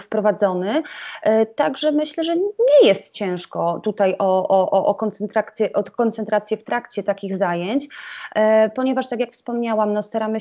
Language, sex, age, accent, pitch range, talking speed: Polish, female, 30-49, native, 200-230 Hz, 140 wpm